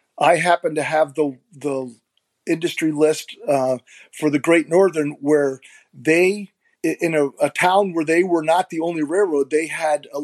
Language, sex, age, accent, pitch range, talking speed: English, male, 40-59, American, 140-170 Hz, 170 wpm